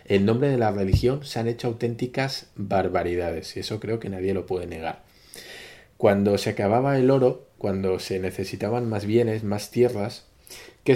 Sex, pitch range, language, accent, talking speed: male, 100-130 Hz, Spanish, Spanish, 170 wpm